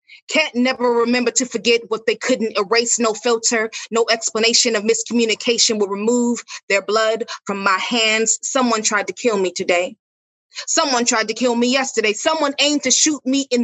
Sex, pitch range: female, 210-250 Hz